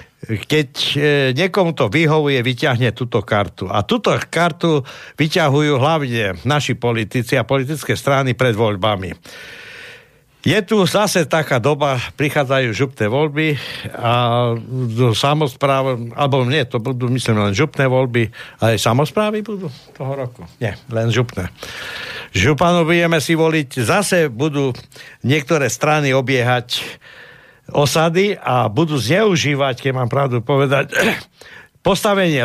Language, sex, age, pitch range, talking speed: Slovak, male, 60-79, 125-155 Hz, 120 wpm